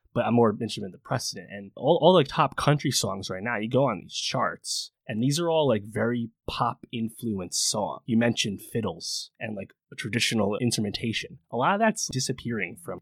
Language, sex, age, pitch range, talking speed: English, male, 20-39, 105-130 Hz, 200 wpm